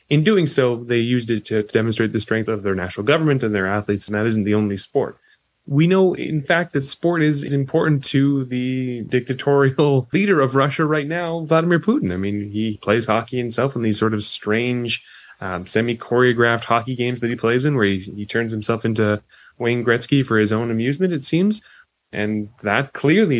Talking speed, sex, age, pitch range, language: 200 wpm, male, 20-39, 110-135 Hz, English